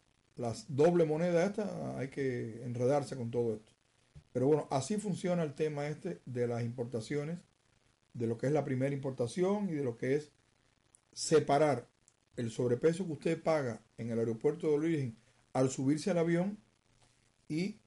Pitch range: 120-165 Hz